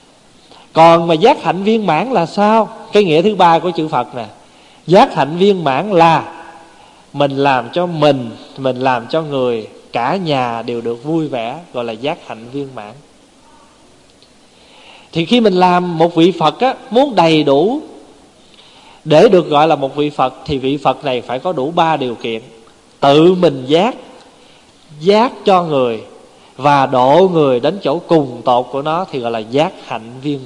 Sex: male